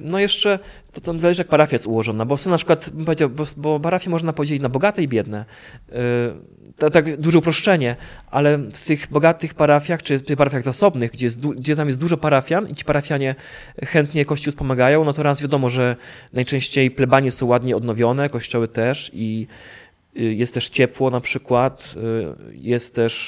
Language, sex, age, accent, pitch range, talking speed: Polish, male, 20-39, native, 130-165 Hz, 185 wpm